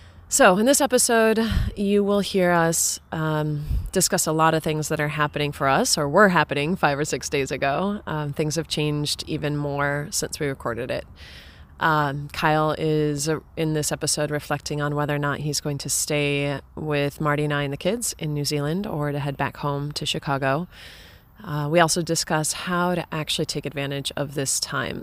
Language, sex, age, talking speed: English, female, 20-39, 195 wpm